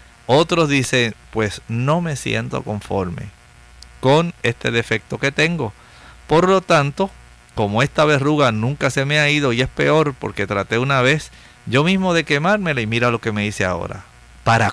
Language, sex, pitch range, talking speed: English, male, 105-145 Hz, 170 wpm